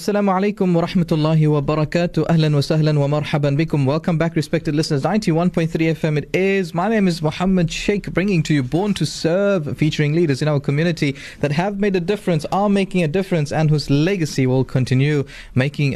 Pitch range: 125-165 Hz